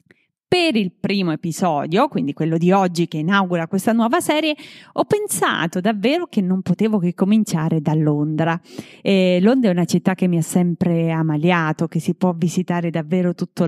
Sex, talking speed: female, 170 wpm